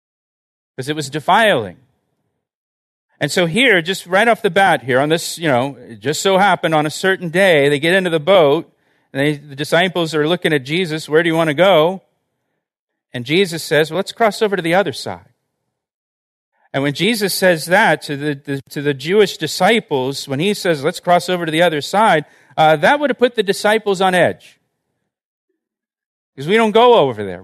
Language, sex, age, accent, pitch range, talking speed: English, male, 40-59, American, 140-185 Hz, 200 wpm